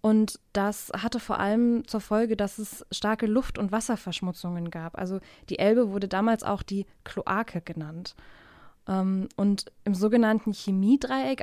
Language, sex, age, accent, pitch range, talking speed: German, female, 20-39, German, 195-230 Hz, 140 wpm